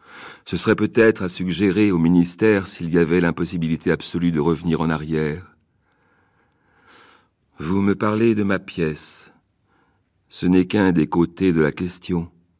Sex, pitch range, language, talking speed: male, 80-95 Hz, French, 145 wpm